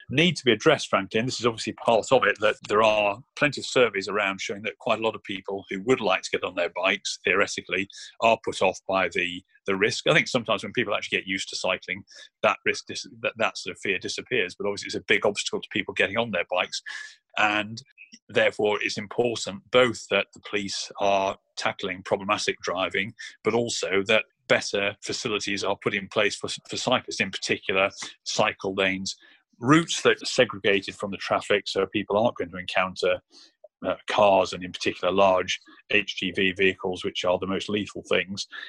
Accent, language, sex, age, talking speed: British, English, male, 30-49, 200 wpm